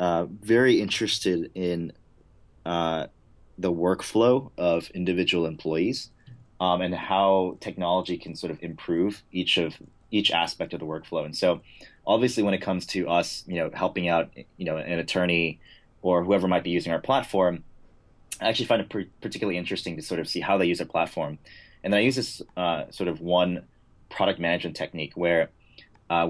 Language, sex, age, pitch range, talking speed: English, male, 30-49, 85-95 Hz, 180 wpm